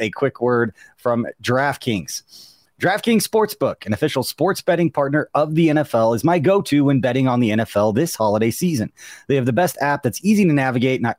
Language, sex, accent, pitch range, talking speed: English, male, American, 120-155 Hz, 195 wpm